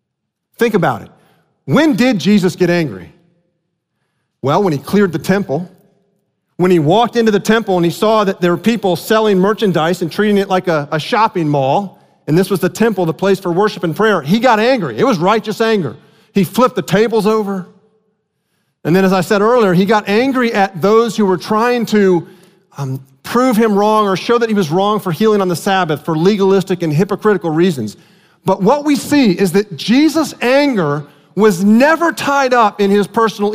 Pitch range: 175-225 Hz